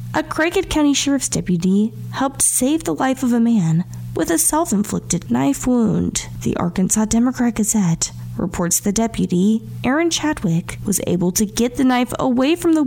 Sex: female